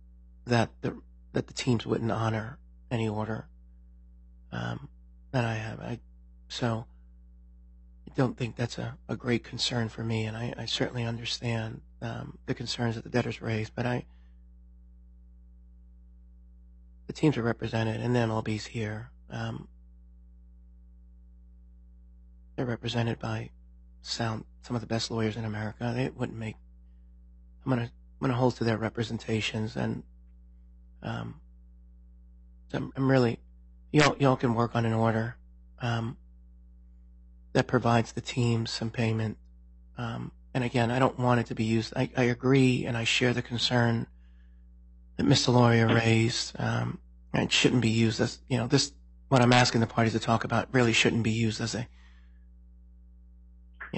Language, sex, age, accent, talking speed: English, male, 30-49, American, 150 wpm